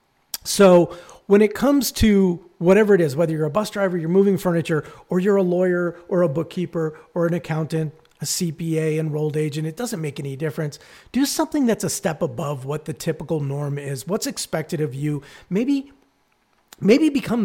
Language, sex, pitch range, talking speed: English, male, 155-200 Hz, 180 wpm